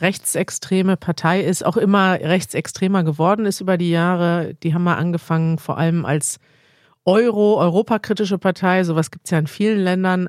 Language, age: German, 50-69